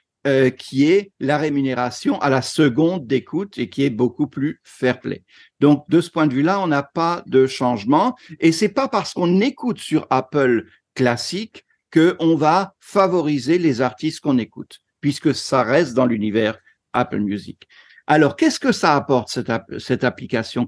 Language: French